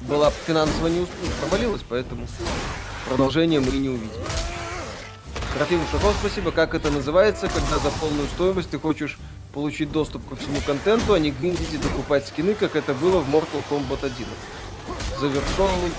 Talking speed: 150 wpm